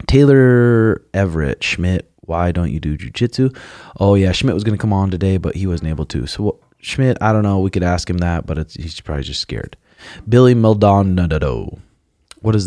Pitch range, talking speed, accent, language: 90-115 Hz, 200 wpm, American, English